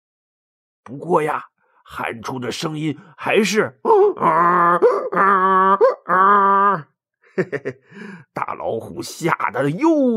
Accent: native